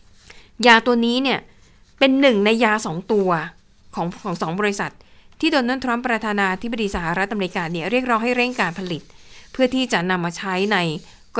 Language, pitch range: Thai, 195-250 Hz